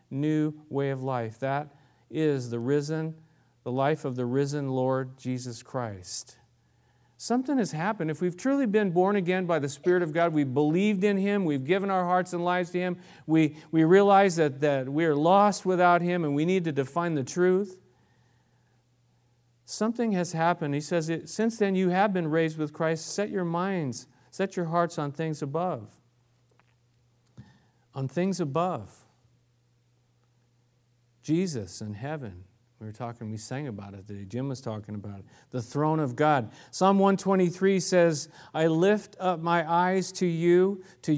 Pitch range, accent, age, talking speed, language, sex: 120-180 Hz, American, 40-59, 170 wpm, English, male